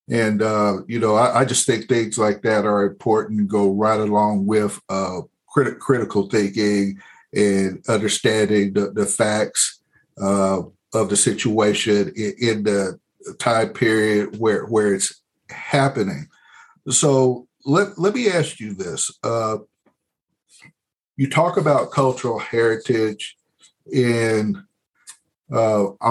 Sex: male